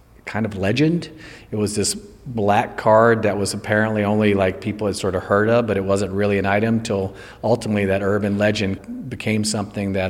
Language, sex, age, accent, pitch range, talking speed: English, male, 40-59, American, 105-115 Hz, 195 wpm